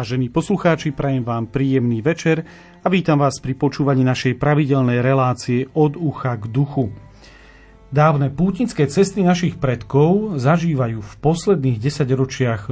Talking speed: 125 wpm